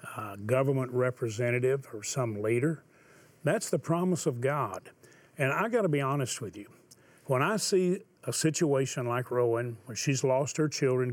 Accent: American